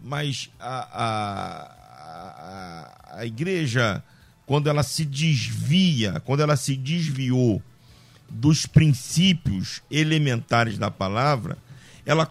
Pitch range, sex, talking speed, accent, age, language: 130-165 Hz, male, 95 wpm, Brazilian, 50-69, Portuguese